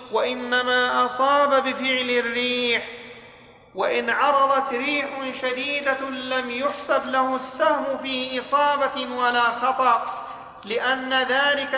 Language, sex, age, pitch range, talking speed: Arabic, male, 40-59, 245-275 Hz, 90 wpm